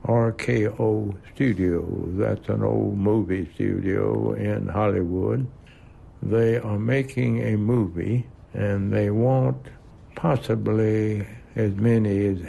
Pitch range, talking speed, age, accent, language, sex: 95-115 Hz, 100 wpm, 60-79, American, English, male